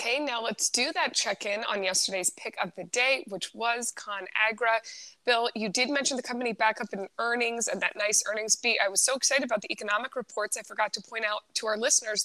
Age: 20-39